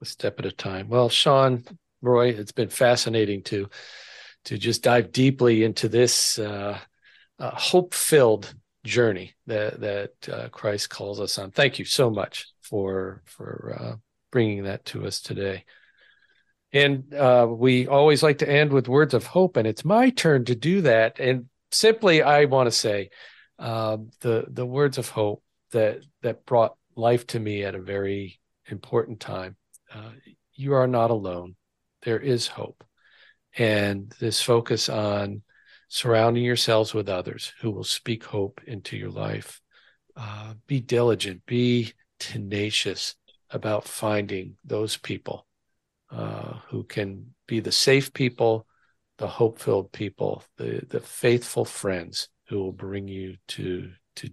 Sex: male